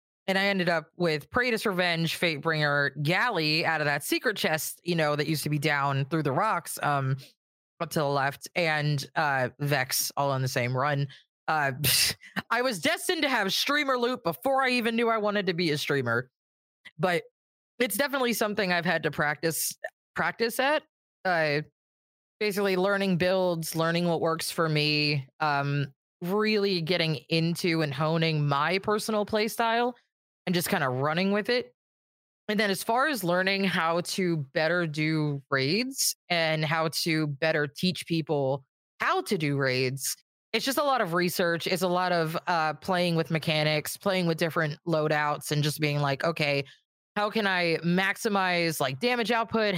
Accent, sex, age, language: American, female, 20-39, English